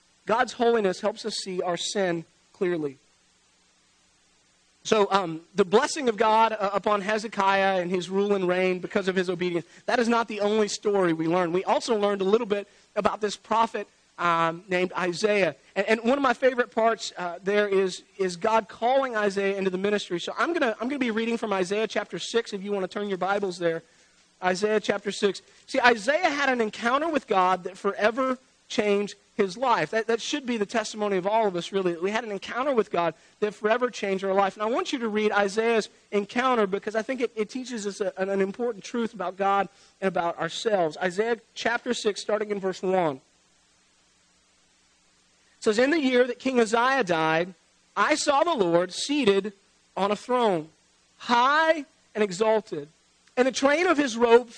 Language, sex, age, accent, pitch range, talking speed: English, male, 40-59, American, 185-230 Hz, 195 wpm